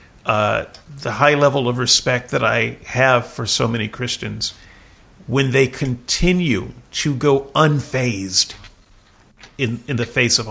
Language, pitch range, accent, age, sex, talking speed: English, 105-135 Hz, American, 40-59, male, 135 wpm